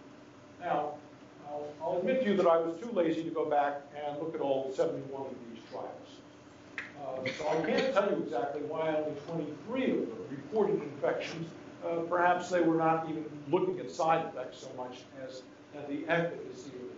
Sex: male